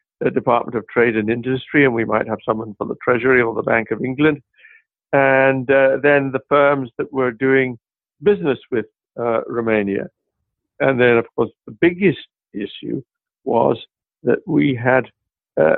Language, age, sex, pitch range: English, 60-79, male, 120-145 Hz